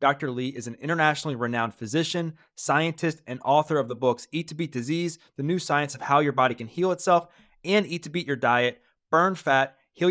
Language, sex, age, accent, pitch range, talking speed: English, male, 30-49, American, 130-170 Hz, 215 wpm